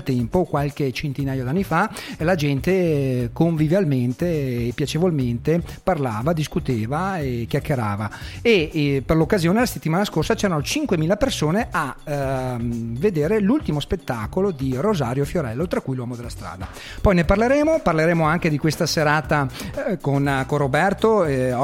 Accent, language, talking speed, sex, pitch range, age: native, Italian, 140 wpm, male, 145-200 Hz, 40-59